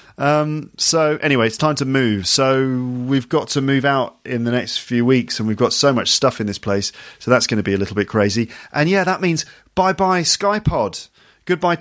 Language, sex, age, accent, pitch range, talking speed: English, male, 40-59, British, 105-140 Hz, 225 wpm